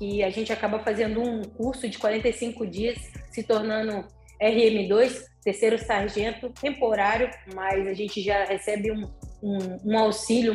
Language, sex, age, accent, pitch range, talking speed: Portuguese, female, 20-39, Brazilian, 200-230 Hz, 140 wpm